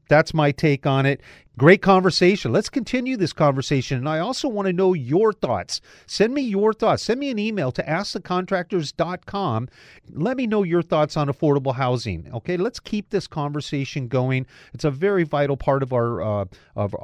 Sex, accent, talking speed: male, American, 185 wpm